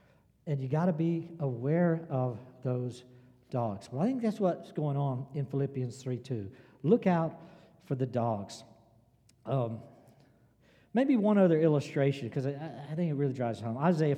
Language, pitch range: English, 120-160 Hz